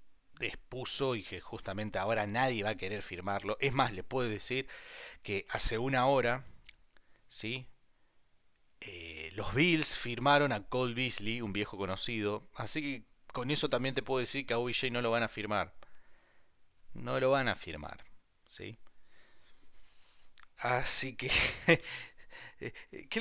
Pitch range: 100-130 Hz